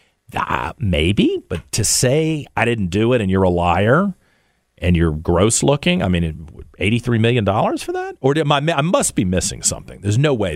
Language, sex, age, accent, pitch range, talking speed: English, male, 50-69, American, 85-115 Hz, 190 wpm